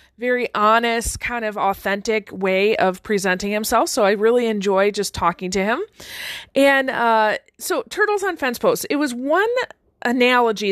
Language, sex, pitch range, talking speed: English, female, 205-270 Hz, 155 wpm